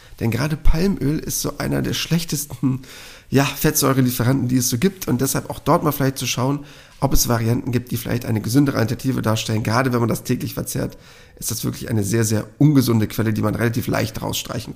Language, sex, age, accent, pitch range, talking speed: German, male, 40-59, German, 115-145 Hz, 205 wpm